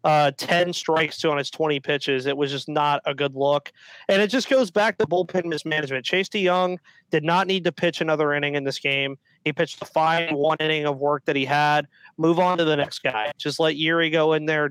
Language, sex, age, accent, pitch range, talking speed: English, male, 30-49, American, 145-180 Hz, 235 wpm